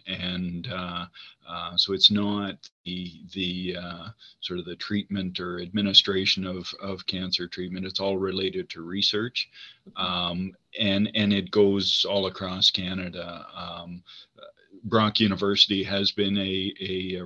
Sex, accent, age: male, American, 40-59